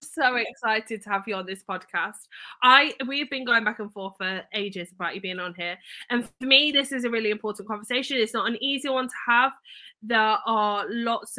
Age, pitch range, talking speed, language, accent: 10-29, 200-240 Hz, 215 wpm, English, British